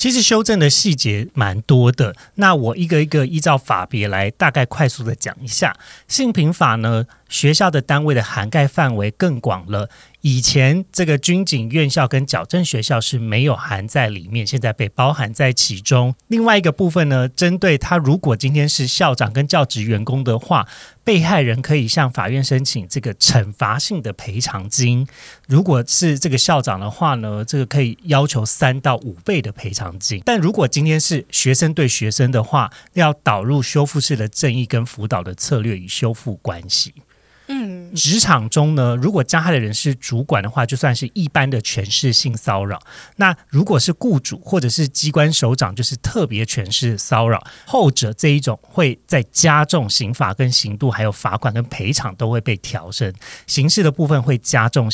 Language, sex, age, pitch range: Chinese, male, 30-49, 115-155 Hz